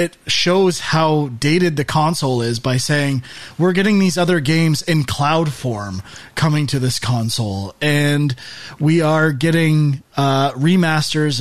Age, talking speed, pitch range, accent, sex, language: 30-49, 140 wpm, 130-165 Hz, American, male, English